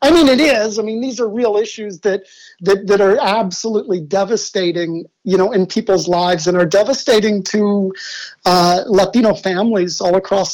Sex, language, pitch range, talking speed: male, English, 175-215 Hz, 170 wpm